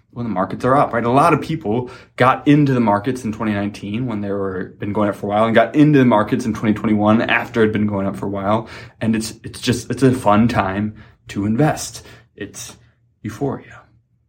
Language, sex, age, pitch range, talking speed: English, male, 20-39, 110-140 Hz, 220 wpm